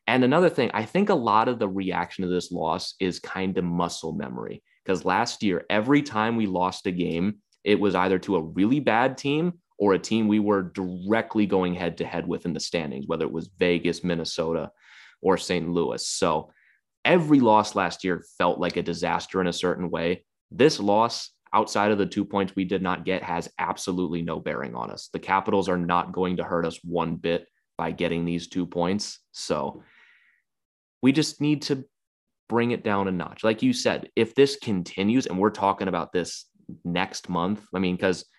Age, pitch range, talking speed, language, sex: 20-39, 85-105 Hz, 200 wpm, English, male